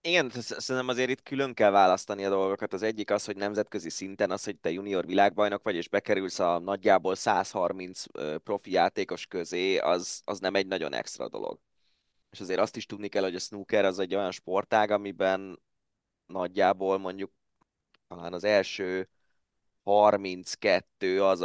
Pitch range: 95-120 Hz